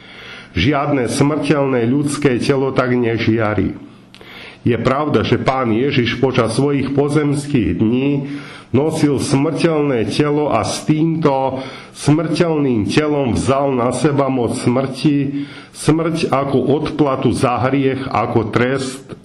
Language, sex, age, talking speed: Slovak, male, 40-59, 110 wpm